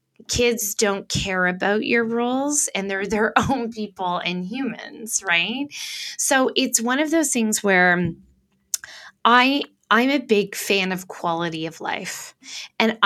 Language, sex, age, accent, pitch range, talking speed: English, female, 20-39, American, 185-235 Hz, 145 wpm